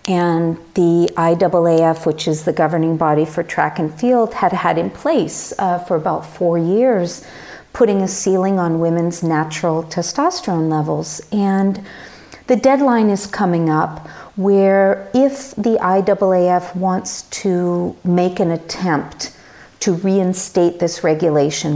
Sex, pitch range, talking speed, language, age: female, 160-200 Hz, 130 wpm, English, 50-69